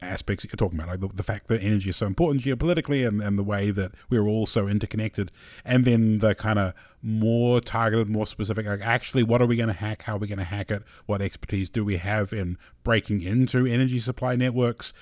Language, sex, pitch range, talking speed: English, male, 100-125 Hz, 230 wpm